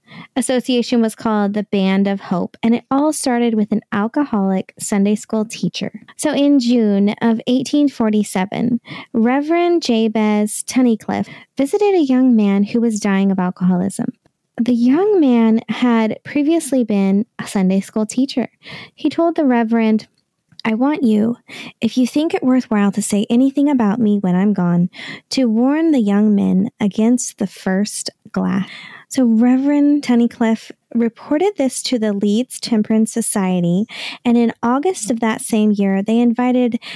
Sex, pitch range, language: female, 210-260 Hz, English